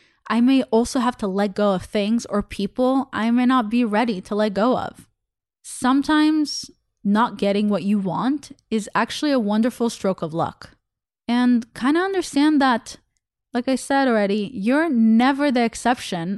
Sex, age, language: female, 20-39, English